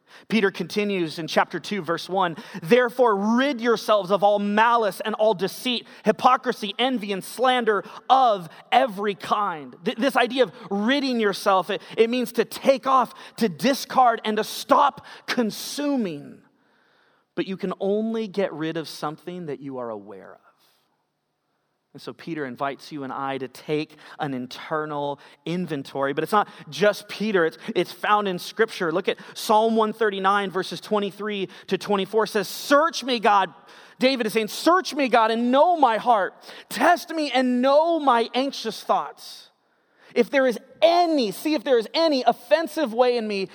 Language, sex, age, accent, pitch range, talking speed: English, male, 30-49, American, 190-250 Hz, 160 wpm